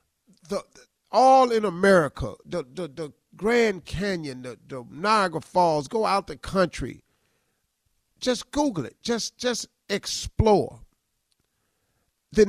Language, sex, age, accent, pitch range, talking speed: English, male, 40-59, American, 150-235 Hz, 120 wpm